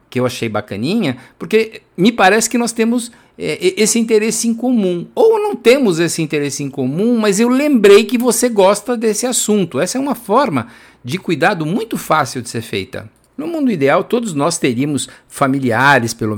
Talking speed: 180 wpm